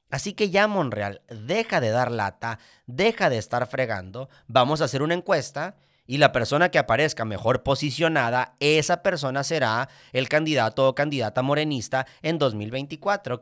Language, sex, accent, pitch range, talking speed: Spanish, male, Mexican, 125-165 Hz, 150 wpm